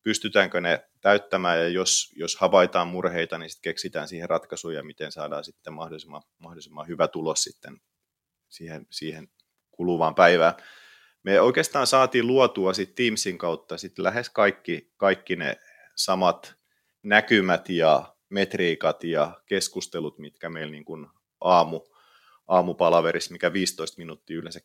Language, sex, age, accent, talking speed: English, male, 30-49, Finnish, 130 wpm